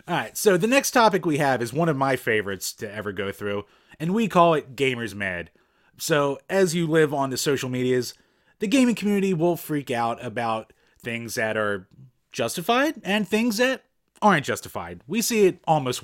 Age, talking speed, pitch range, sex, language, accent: 30-49, 185 wpm, 115-175 Hz, male, English, American